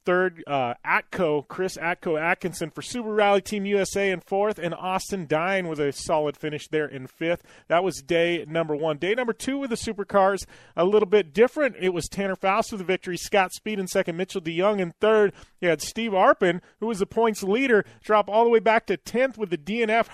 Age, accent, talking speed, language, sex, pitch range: 30-49, American, 215 wpm, English, male, 140-190 Hz